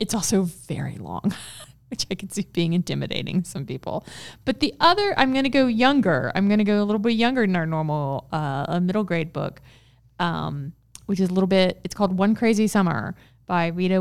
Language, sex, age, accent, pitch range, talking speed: English, female, 20-39, American, 160-190 Hz, 195 wpm